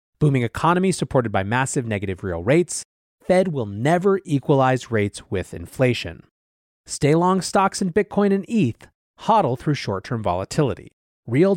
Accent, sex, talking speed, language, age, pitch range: American, male, 135 wpm, English, 30-49, 115-175 Hz